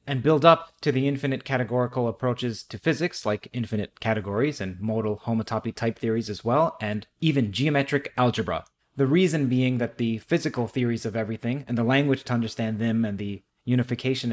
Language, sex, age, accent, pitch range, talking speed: English, male, 30-49, American, 115-145 Hz, 175 wpm